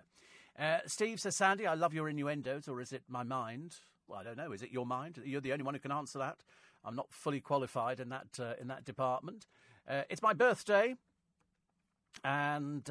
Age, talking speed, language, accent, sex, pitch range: 40-59, 205 wpm, English, British, male, 135-180 Hz